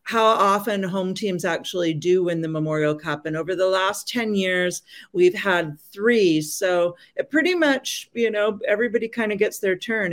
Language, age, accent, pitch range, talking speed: English, 40-59, American, 155-185 Hz, 185 wpm